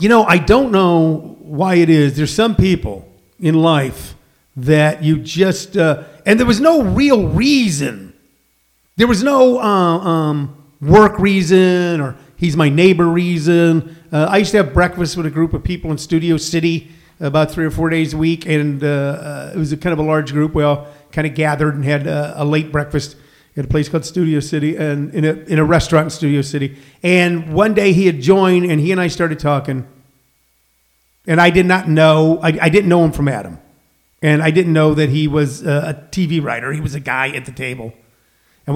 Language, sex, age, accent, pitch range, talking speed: English, male, 50-69, American, 145-180 Hz, 210 wpm